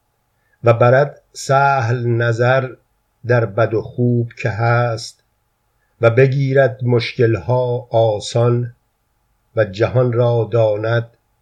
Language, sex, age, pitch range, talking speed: Persian, male, 50-69, 115-125 Hz, 100 wpm